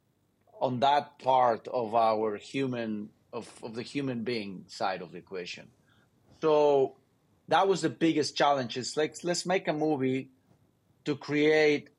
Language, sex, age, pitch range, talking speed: Portuguese, male, 30-49, 125-150 Hz, 145 wpm